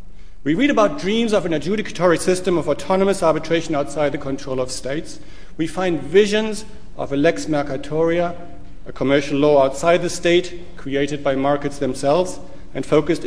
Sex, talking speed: male, 160 wpm